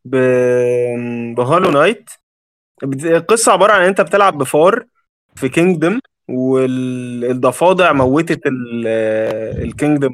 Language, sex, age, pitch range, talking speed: Arabic, male, 20-39, 125-155 Hz, 75 wpm